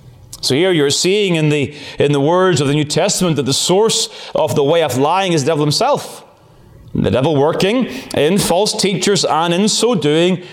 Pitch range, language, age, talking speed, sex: 145-195 Hz, English, 30-49, 200 wpm, male